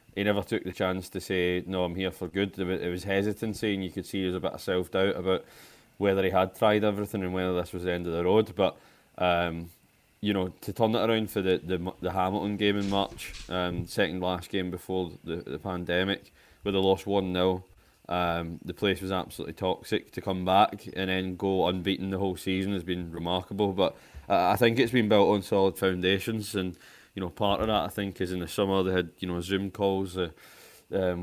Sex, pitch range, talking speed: male, 90-100 Hz, 225 wpm